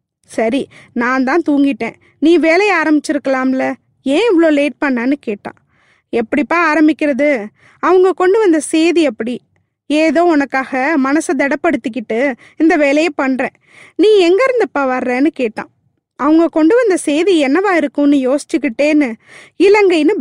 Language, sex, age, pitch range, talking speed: Tamil, female, 20-39, 260-340 Hz, 115 wpm